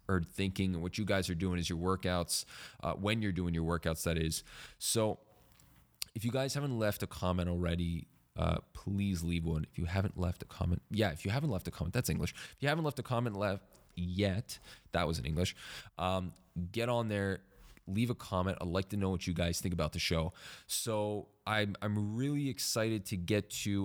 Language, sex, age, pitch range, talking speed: English, male, 20-39, 85-100 Hz, 210 wpm